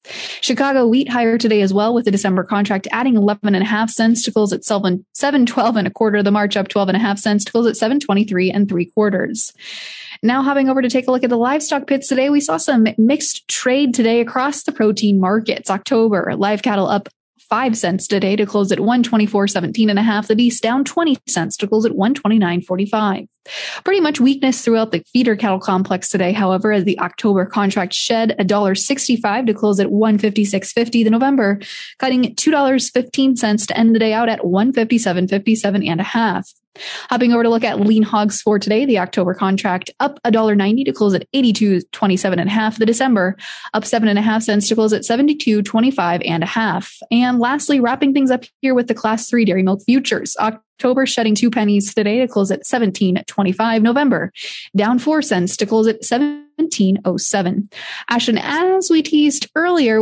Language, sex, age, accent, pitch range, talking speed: English, female, 20-39, American, 205-250 Hz, 205 wpm